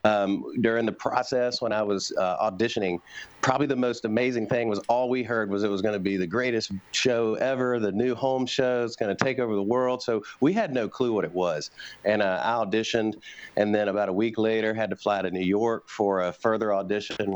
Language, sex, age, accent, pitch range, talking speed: English, male, 40-59, American, 100-125 Hz, 230 wpm